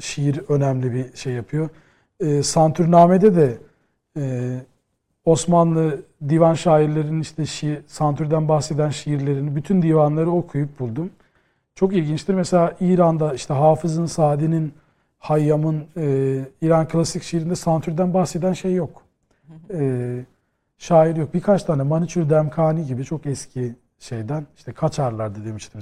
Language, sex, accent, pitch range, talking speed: Turkish, male, native, 135-165 Hz, 120 wpm